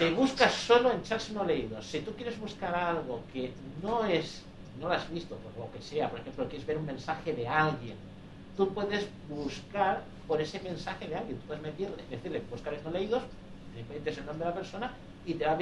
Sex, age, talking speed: male, 60-79, 220 wpm